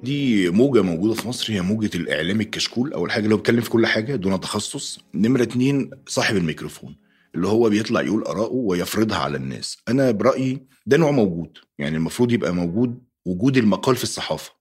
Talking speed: 175 wpm